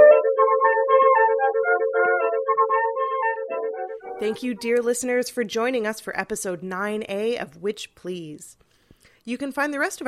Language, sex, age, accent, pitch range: English, female, 30-49, American, 185-240 Hz